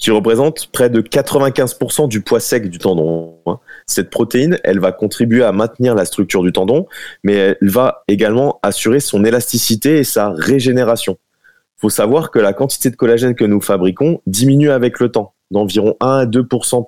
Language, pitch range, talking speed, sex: French, 95-125 Hz, 180 wpm, male